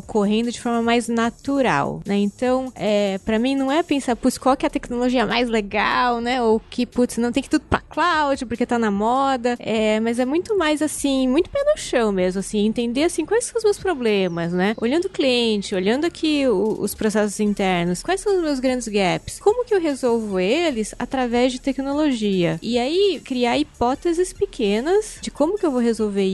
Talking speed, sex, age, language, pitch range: 205 wpm, female, 20-39, Portuguese, 215-300 Hz